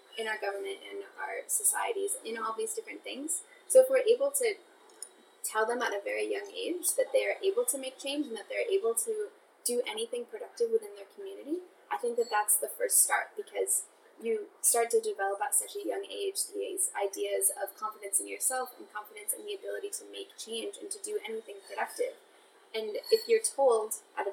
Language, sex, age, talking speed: English, female, 10-29, 200 wpm